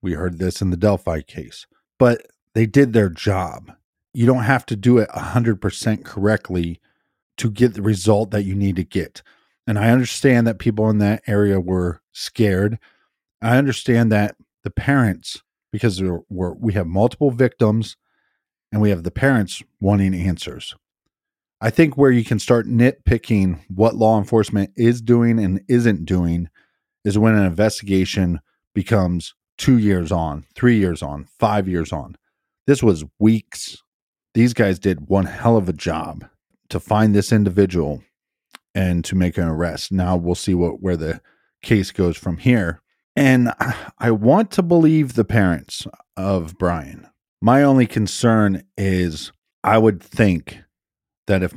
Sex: male